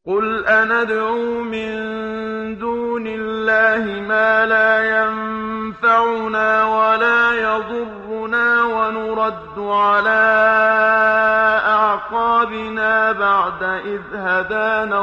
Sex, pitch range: male, 200-220 Hz